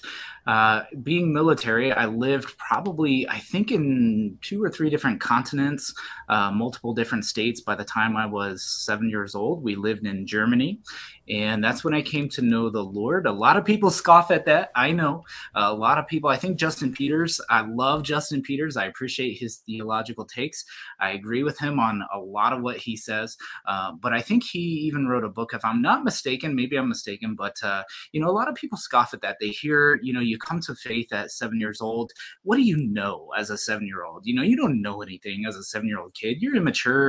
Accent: American